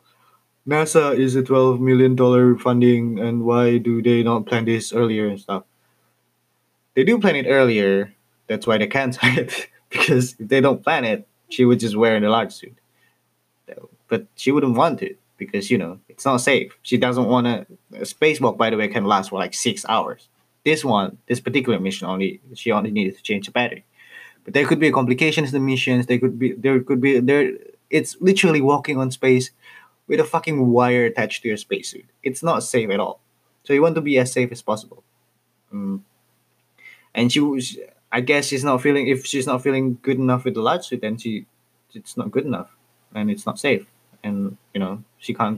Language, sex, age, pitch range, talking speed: Indonesian, male, 20-39, 115-135 Hz, 205 wpm